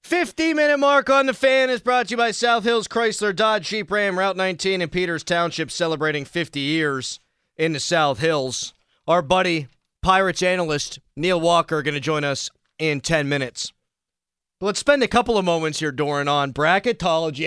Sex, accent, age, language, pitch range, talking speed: male, American, 30-49, English, 135-200 Hz, 175 wpm